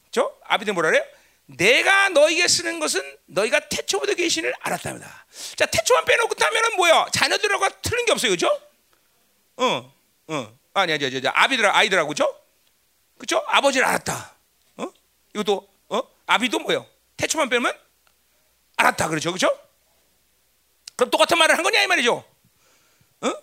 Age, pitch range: 40-59, 240-395 Hz